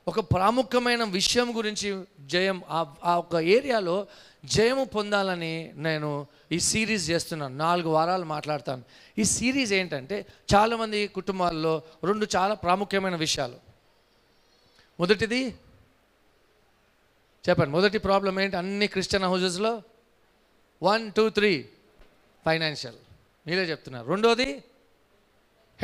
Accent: Indian